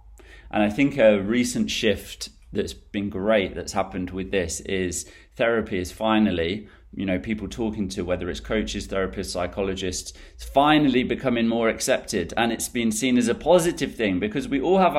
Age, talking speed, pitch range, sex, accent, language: 30-49, 175 wpm, 90-115 Hz, male, British, English